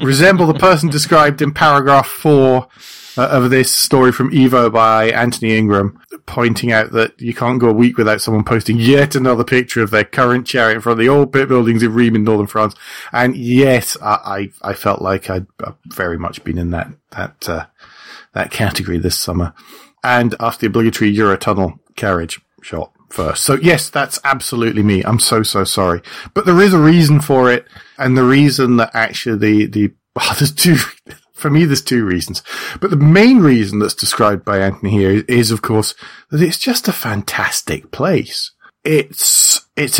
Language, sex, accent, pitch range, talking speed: English, male, British, 110-140 Hz, 185 wpm